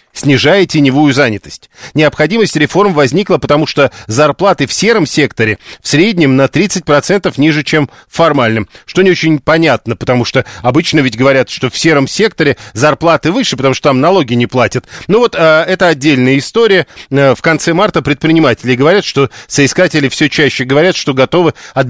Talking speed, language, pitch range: 160 wpm, Russian, 135-170 Hz